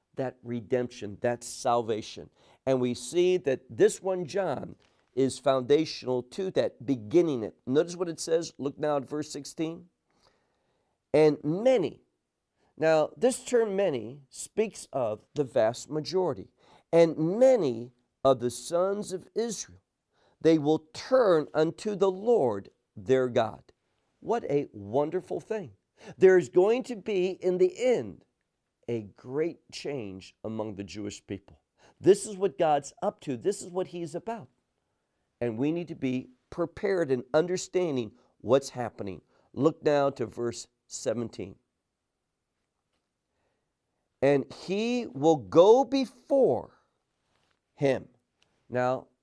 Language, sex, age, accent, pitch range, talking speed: English, male, 50-69, American, 125-195 Hz, 130 wpm